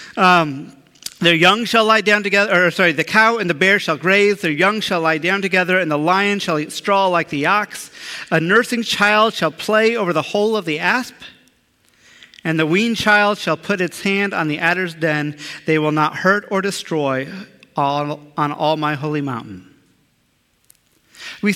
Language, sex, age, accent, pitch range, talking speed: English, male, 40-59, American, 155-210 Hz, 180 wpm